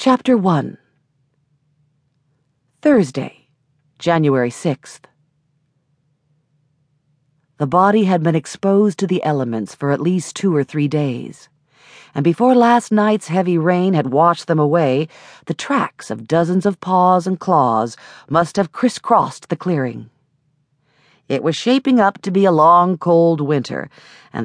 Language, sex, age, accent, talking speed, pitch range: English, female, 50-69, American, 135 wpm, 140-180 Hz